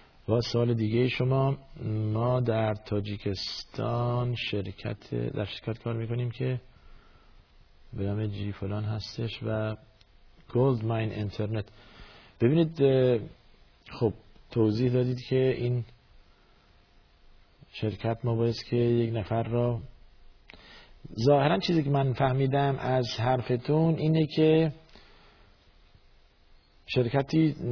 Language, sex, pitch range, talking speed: Persian, male, 100-120 Hz, 95 wpm